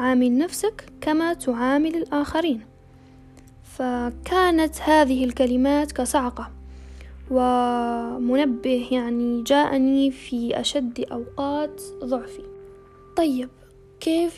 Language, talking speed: Arabic, 75 wpm